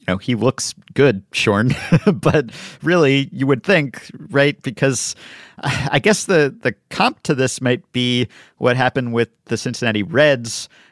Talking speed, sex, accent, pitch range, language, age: 155 wpm, male, American, 105-130 Hz, English, 50-69